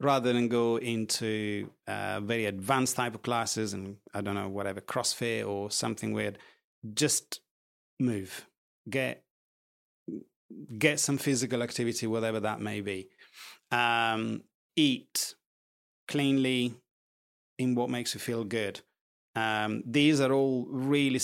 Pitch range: 110-130 Hz